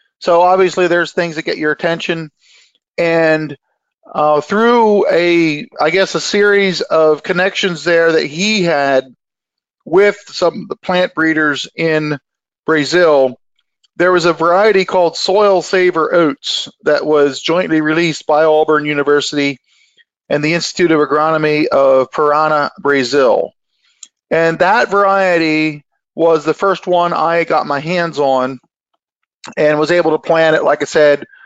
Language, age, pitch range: English, 40-59, 155-200 Hz